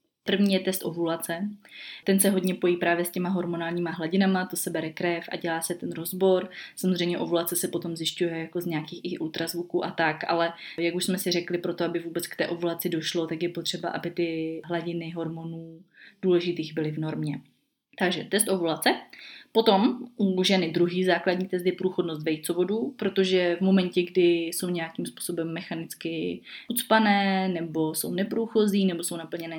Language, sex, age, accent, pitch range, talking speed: Czech, female, 20-39, native, 165-185 Hz, 170 wpm